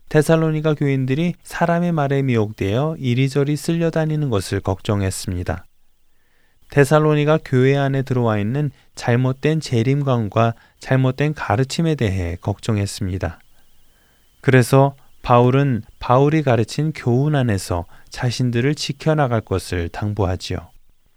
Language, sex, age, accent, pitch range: Korean, male, 20-39, native, 105-145 Hz